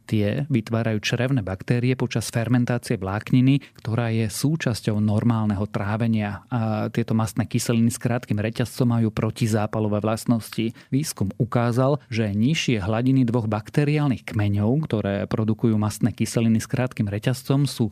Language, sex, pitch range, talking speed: Slovak, male, 105-125 Hz, 125 wpm